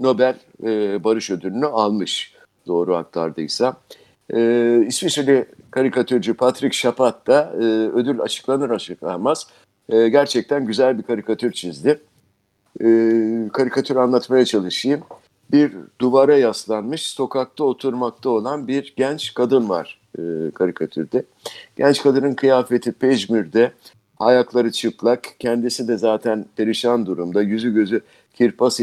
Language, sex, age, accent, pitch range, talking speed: Turkish, male, 60-79, native, 110-140 Hz, 110 wpm